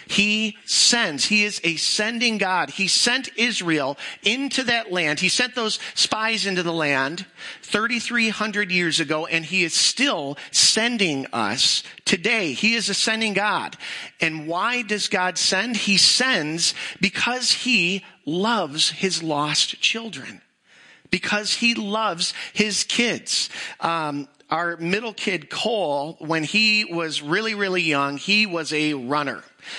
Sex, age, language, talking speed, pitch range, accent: male, 40-59, English, 135 wpm, 160-215 Hz, American